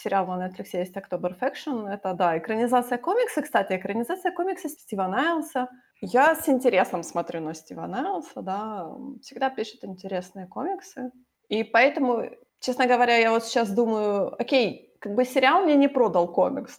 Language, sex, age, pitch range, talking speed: Ukrainian, female, 20-39, 185-255 Hz, 155 wpm